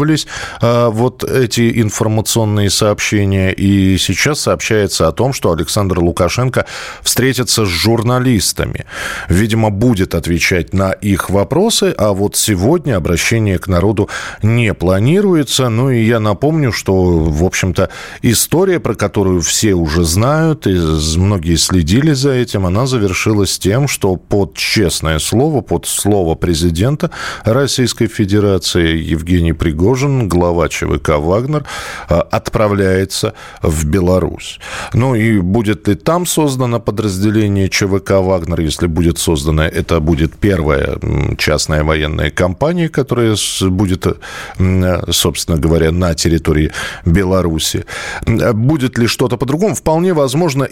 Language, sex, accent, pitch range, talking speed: Russian, male, native, 90-125 Hz, 115 wpm